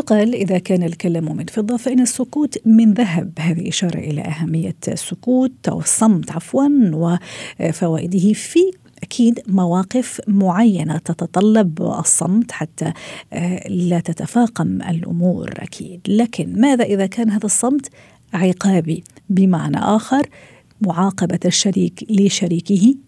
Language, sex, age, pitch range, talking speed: Arabic, female, 50-69, 170-220 Hz, 110 wpm